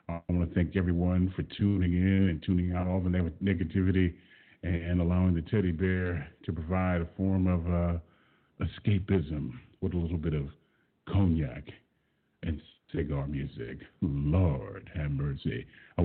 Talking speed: 145 wpm